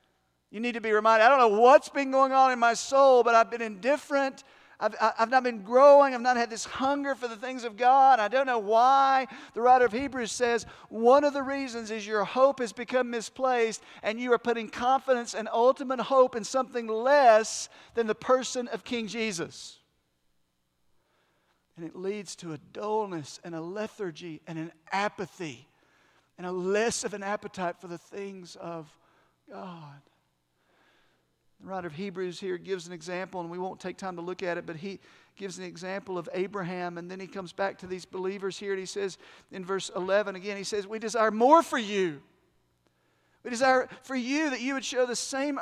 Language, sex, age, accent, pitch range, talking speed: English, male, 50-69, American, 185-255 Hz, 195 wpm